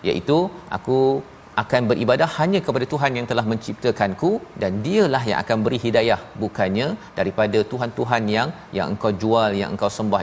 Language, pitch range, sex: Malayalam, 105-125 Hz, male